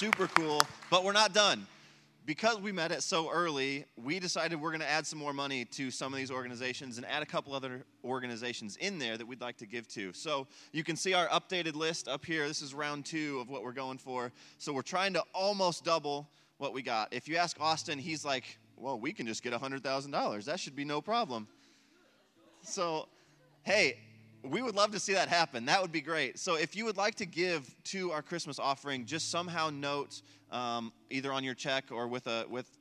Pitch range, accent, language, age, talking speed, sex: 115-165 Hz, American, English, 20-39, 220 wpm, male